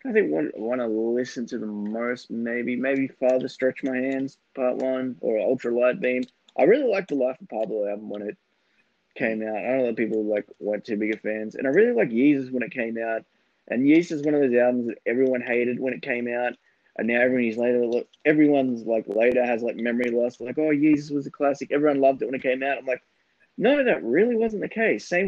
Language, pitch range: English, 105-130 Hz